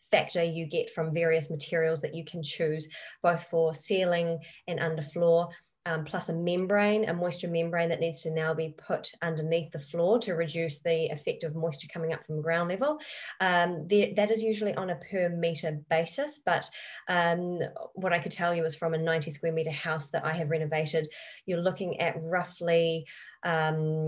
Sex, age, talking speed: female, 20-39, 185 wpm